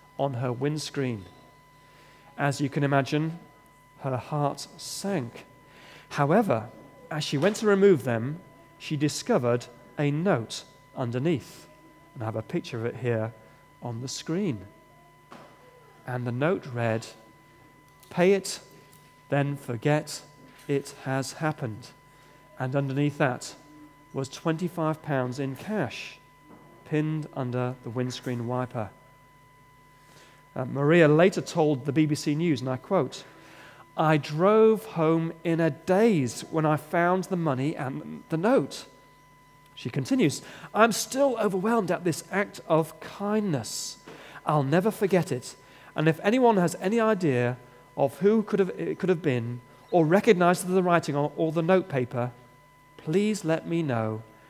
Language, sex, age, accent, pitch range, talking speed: English, male, 40-59, British, 130-165 Hz, 135 wpm